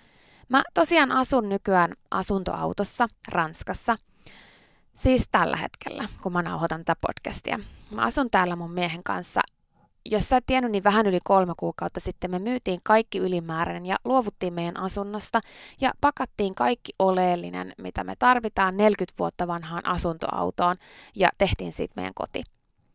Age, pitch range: 20-39, 175-220 Hz